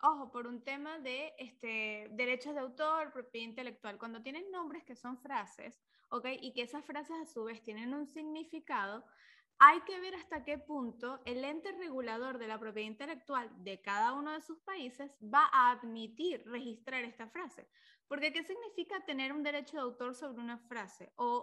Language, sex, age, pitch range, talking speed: Spanish, female, 10-29, 245-305 Hz, 180 wpm